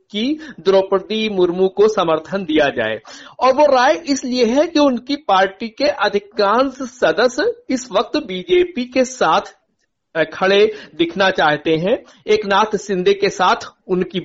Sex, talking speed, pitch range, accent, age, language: male, 135 wpm, 170-245 Hz, native, 60-79, Hindi